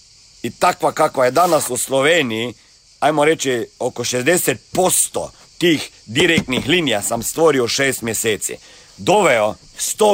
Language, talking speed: Croatian, 120 wpm